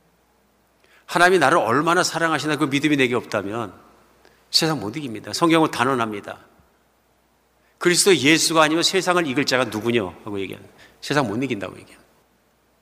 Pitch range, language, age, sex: 105-150 Hz, Korean, 50-69, male